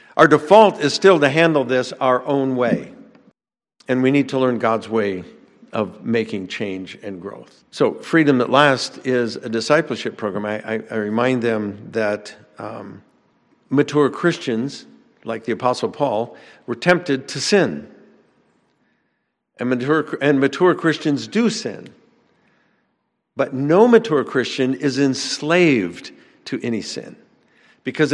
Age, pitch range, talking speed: 50-69, 115-155 Hz, 135 wpm